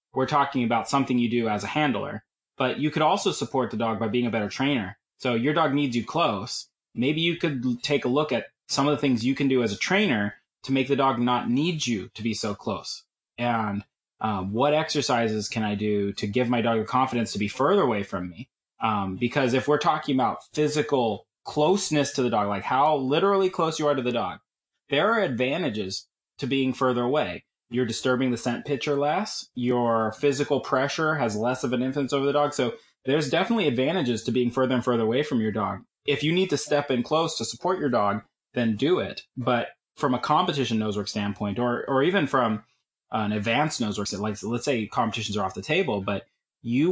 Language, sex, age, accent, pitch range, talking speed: English, male, 30-49, American, 115-145 Hz, 215 wpm